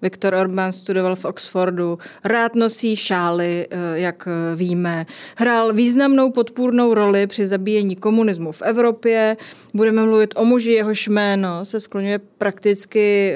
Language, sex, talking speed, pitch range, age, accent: Czech, female, 125 wpm, 185-220 Hz, 30-49, native